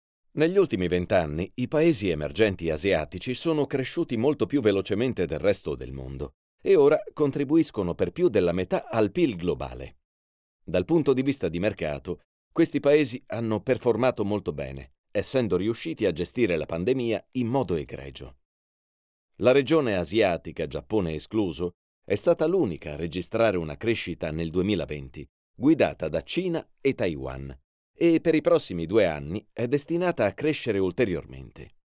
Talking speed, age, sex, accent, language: 145 wpm, 40-59, male, native, Italian